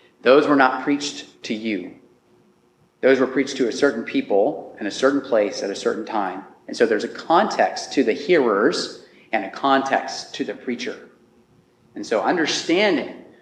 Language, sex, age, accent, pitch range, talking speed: English, male, 30-49, American, 130-175 Hz, 170 wpm